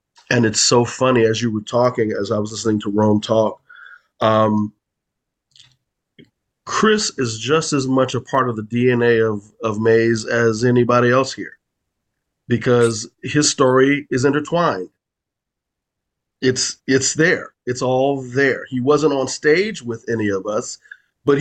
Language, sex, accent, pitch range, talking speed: English, male, American, 110-135 Hz, 150 wpm